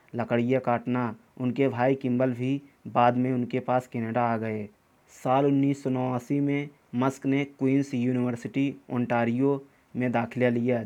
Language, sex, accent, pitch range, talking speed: Hindi, male, native, 120-140 Hz, 135 wpm